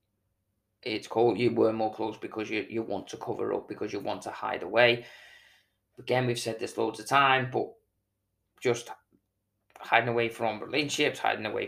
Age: 20-39